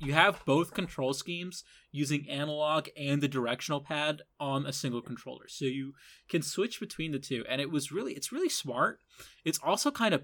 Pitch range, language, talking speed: 130-155 Hz, English, 195 wpm